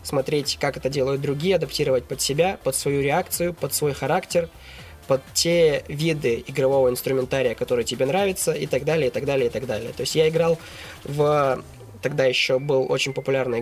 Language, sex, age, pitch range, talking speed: Russian, male, 20-39, 130-165 Hz, 180 wpm